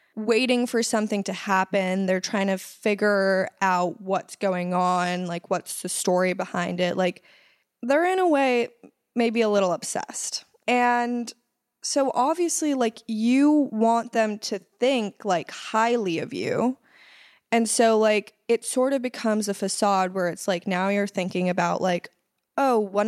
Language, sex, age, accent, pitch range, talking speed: English, female, 20-39, American, 185-230 Hz, 155 wpm